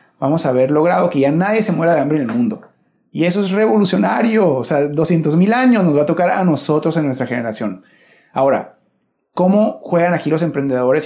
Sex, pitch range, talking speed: male, 135-185 Hz, 205 wpm